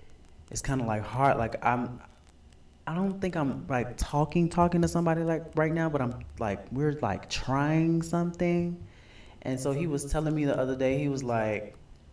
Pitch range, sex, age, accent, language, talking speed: 100-150 Hz, male, 20-39, American, English, 190 wpm